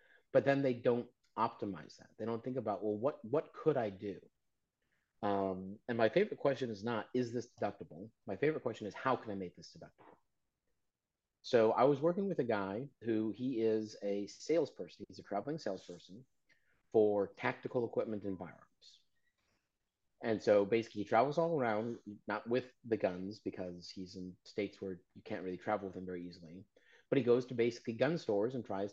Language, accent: English, American